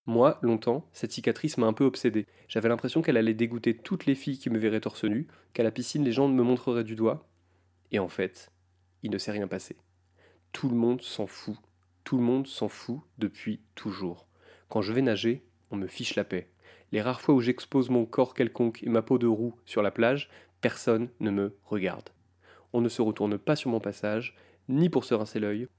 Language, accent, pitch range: French, French, 105-130 Hz